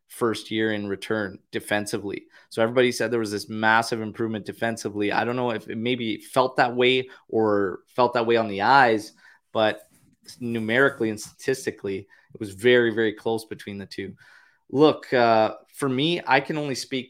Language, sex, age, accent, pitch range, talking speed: English, male, 20-39, American, 110-125 Hz, 175 wpm